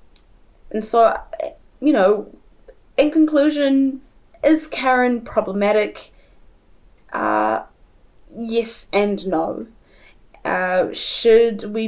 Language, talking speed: English, 80 wpm